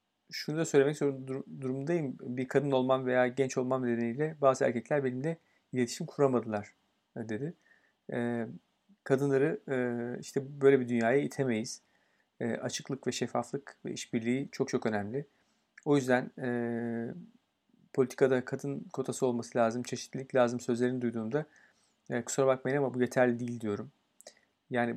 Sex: male